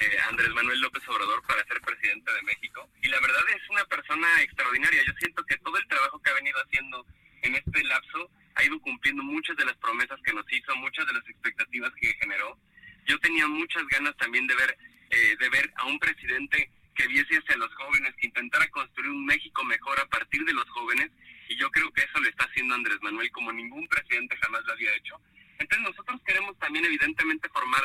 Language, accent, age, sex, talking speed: Spanish, Mexican, 30-49, male, 210 wpm